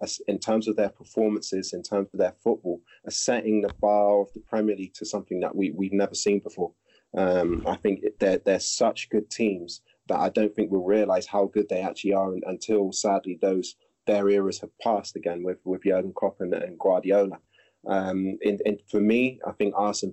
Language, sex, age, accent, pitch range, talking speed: English, male, 20-39, British, 100-110 Hz, 205 wpm